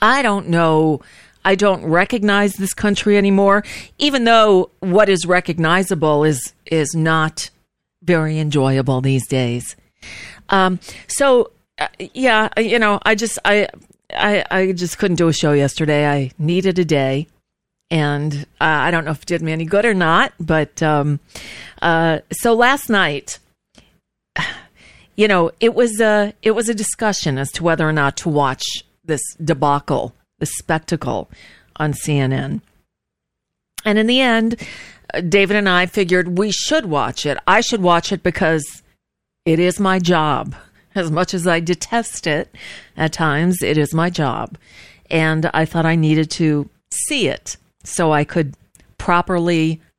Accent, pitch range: American, 155-200 Hz